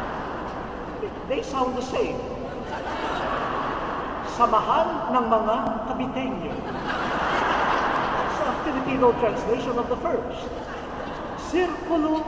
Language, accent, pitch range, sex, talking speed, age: English, Filipino, 240-330 Hz, male, 80 wpm, 50-69